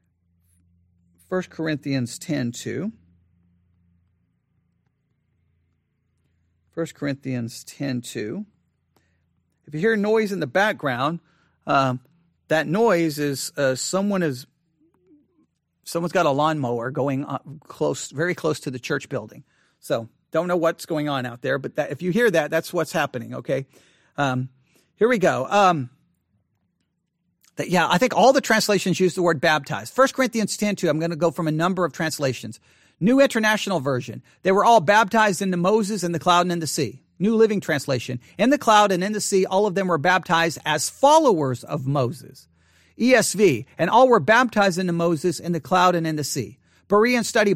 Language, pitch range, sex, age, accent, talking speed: English, 130-195 Hz, male, 40-59, American, 170 wpm